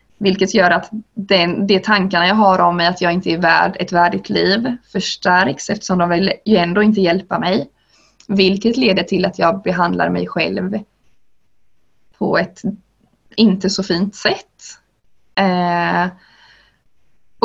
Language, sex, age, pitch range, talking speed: Swedish, female, 20-39, 175-200 Hz, 150 wpm